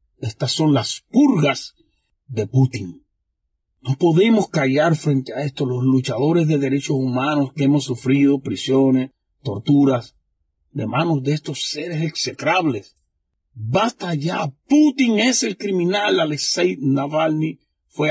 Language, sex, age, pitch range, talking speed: English, male, 40-59, 140-175 Hz, 125 wpm